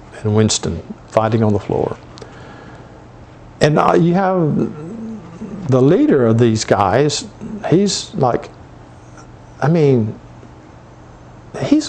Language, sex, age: English, male, 50-69